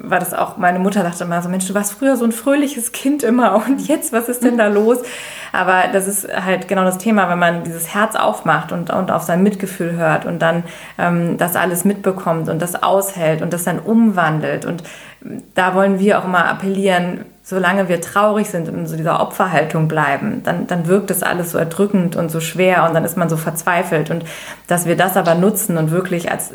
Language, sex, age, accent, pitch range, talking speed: German, female, 20-39, German, 165-195 Hz, 215 wpm